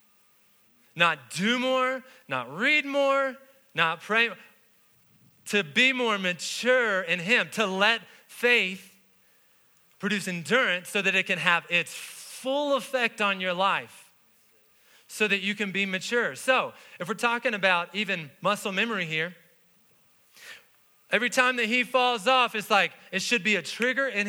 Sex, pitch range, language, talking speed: male, 165-220 Hz, English, 145 wpm